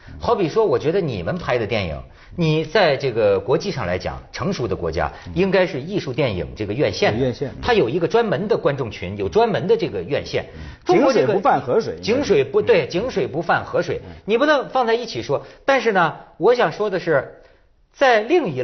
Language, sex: Chinese, male